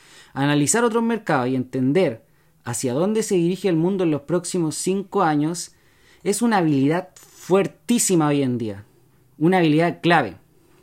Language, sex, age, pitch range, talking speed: Spanish, male, 30-49, 140-195 Hz, 145 wpm